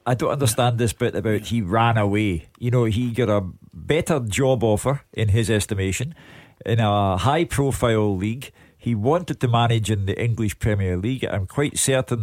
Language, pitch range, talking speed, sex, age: English, 105-130 Hz, 180 wpm, male, 50-69